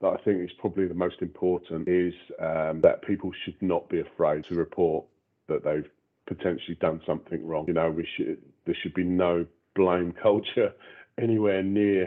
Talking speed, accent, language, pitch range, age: 180 wpm, British, English, 85-100 Hz, 40-59